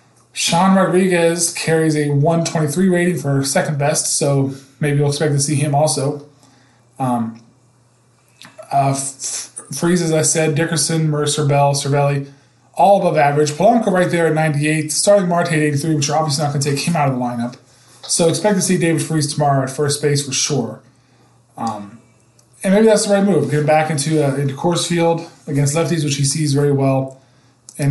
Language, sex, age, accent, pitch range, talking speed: English, male, 20-39, American, 135-160 Hz, 185 wpm